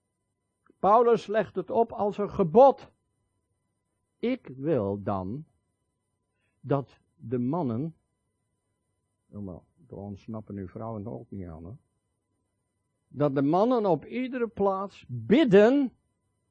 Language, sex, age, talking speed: Dutch, male, 60-79, 100 wpm